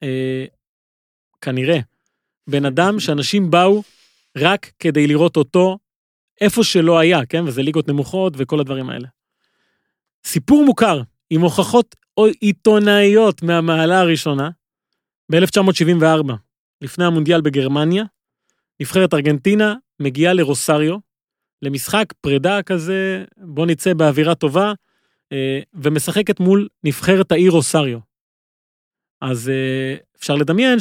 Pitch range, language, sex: 145-190 Hz, Hebrew, male